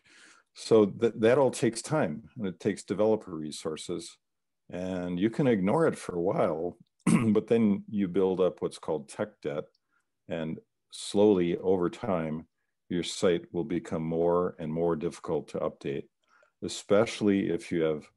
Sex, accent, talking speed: male, American, 150 wpm